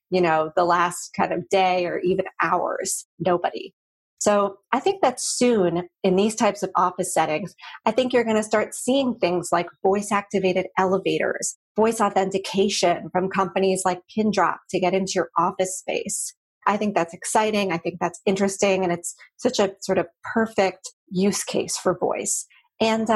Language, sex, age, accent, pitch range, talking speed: English, female, 30-49, American, 180-220 Hz, 170 wpm